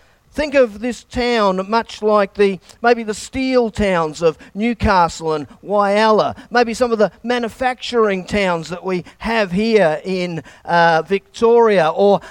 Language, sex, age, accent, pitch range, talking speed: English, male, 40-59, Australian, 205-255 Hz, 140 wpm